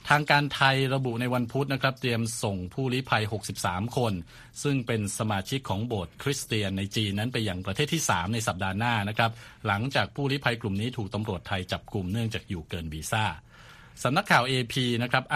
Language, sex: Thai, male